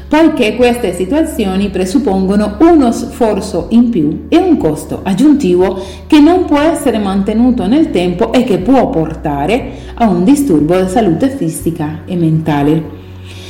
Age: 40-59